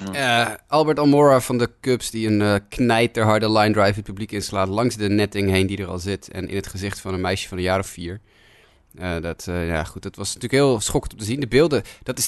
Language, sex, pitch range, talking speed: Dutch, male, 100-125 Hz, 245 wpm